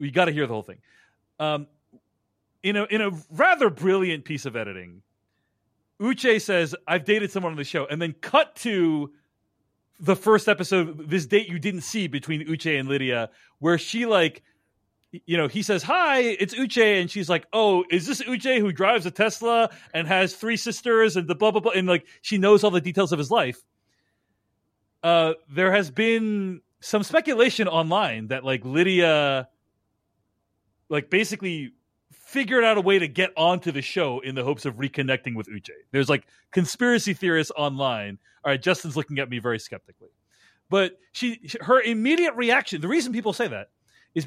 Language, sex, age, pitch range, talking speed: English, male, 30-49, 145-215 Hz, 180 wpm